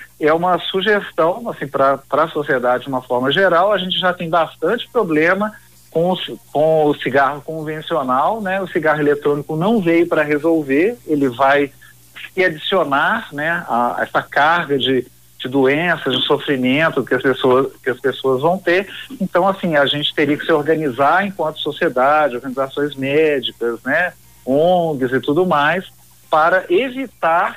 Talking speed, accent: 155 wpm, Brazilian